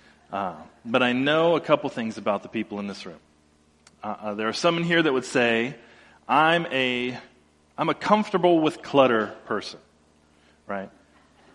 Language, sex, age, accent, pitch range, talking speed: English, male, 30-49, American, 105-140 Hz, 165 wpm